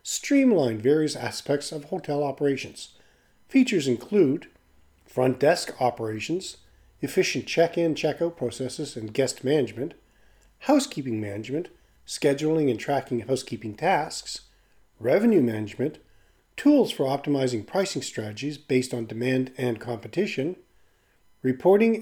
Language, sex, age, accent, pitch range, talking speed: English, male, 40-59, American, 120-160 Hz, 105 wpm